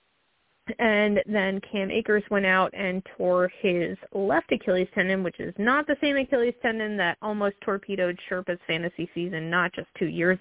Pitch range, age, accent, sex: 185-225 Hz, 20-39, American, female